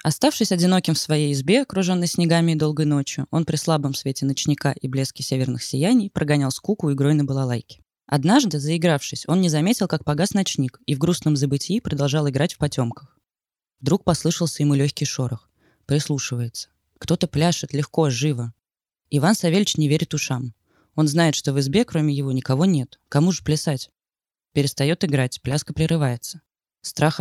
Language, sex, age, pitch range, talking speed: Russian, female, 20-39, 135-165 Hz, 160 wpm